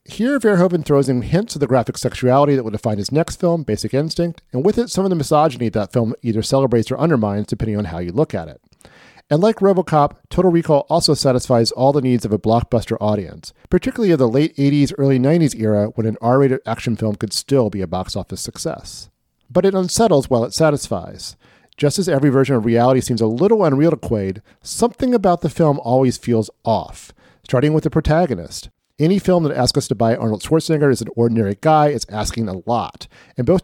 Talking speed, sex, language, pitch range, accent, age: 215 wpm, male, English, 115-160 Hz, American, 40-59